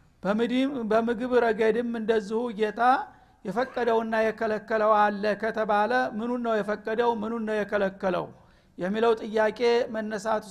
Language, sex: Amharic, male